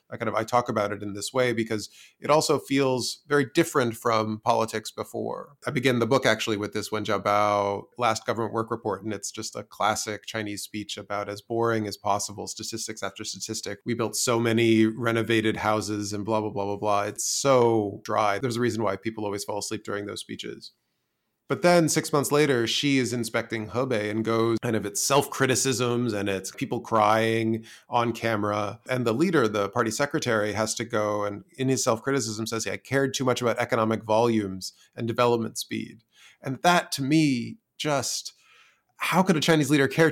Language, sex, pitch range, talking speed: English, male, 110-130 Hz, 195 wpm